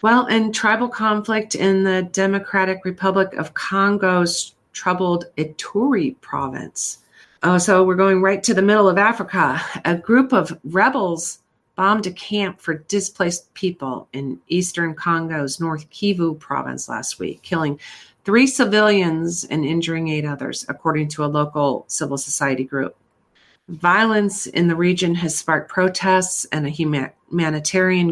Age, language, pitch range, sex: 40-59, English, 145-185 Hz, female